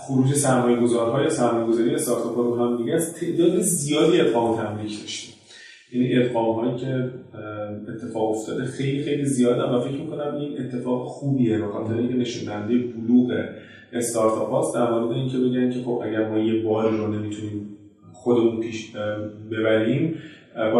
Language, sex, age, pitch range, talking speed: Persian, male, 30-49, 110-125 Hz, 155 wpm